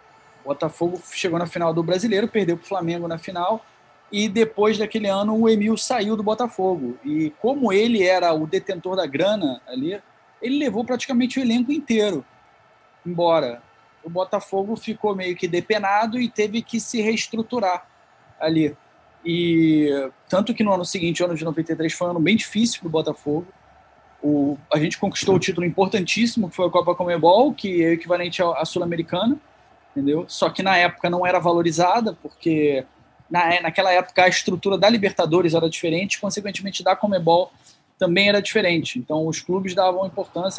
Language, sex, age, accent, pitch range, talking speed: Portuguese, male, 20-39, Brazilian, 170-220 Hz, 165 wpm